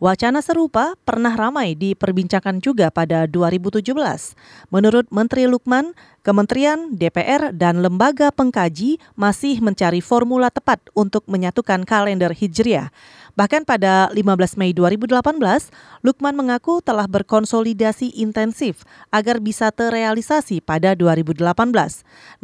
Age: 30-49